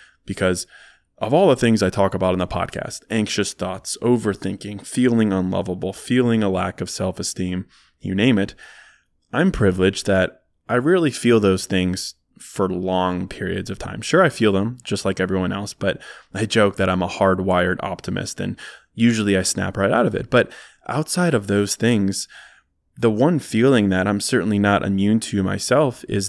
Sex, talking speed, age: male, 175 wpm, 20-39